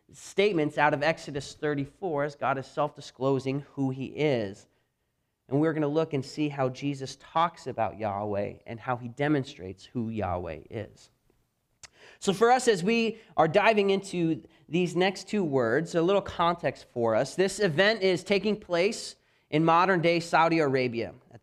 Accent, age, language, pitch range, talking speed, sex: American, 30-49, English, 115-155 Hz, 160 wpm, male